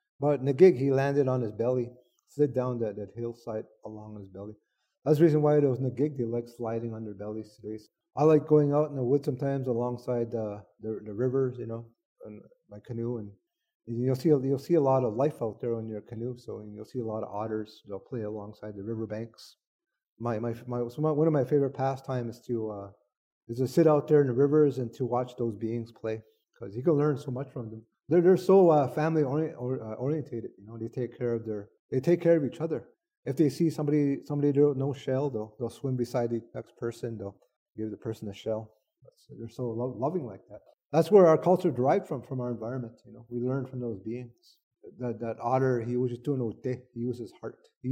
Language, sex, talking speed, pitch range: English, male, 235 wpm, 115-145 Hz